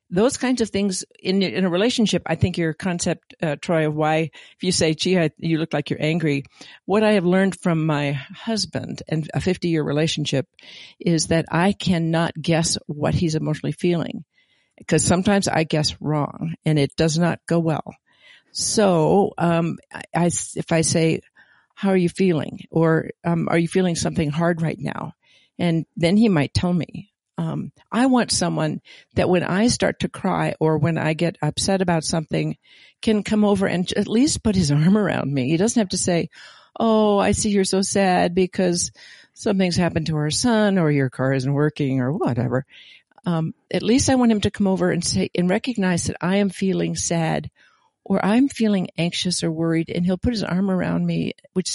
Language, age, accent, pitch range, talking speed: English, 50-69, American, 155-195 Hz, 190 wpm